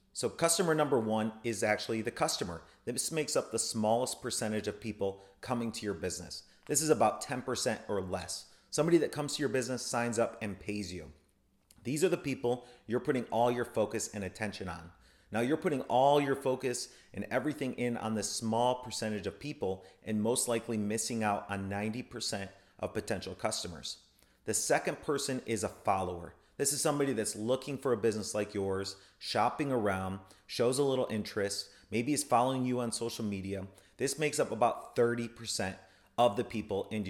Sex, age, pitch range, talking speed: male, 30-49, 100-130 Hz, 180 wpm